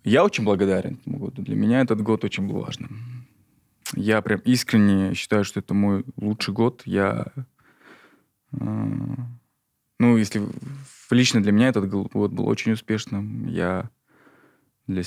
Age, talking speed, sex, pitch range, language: 20-39, 135 wpm, male, 100-120 Hz, Russian